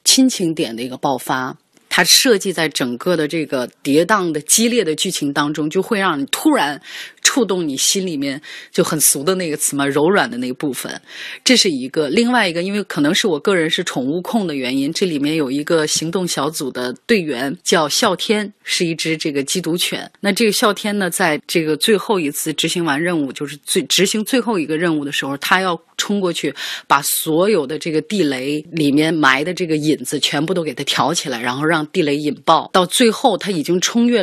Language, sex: Chinese, female